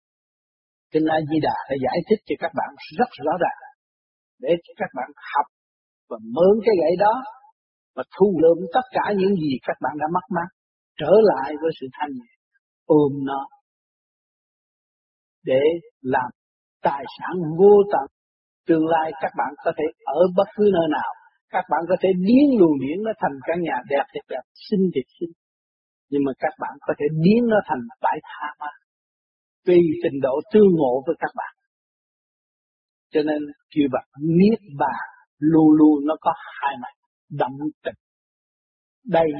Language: Vietnamese